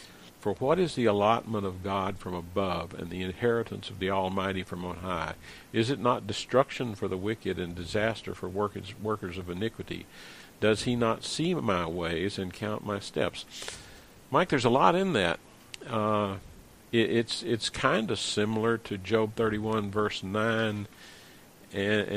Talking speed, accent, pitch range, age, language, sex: 160 wpm, American, 95-115 Hz, 50-69, English, male